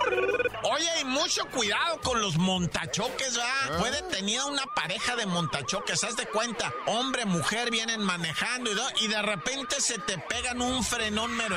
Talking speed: 165 wpm